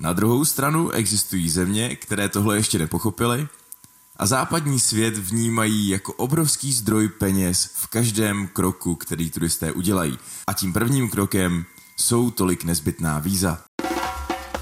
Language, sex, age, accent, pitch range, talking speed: Czech, male, 20-39, native, 90-115 Hz, 125 wpm